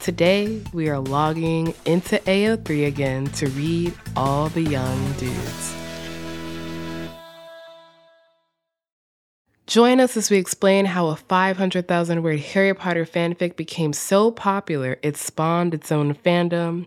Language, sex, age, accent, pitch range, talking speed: English, female, 20-39, American, 150-215 Hz, 115 wpm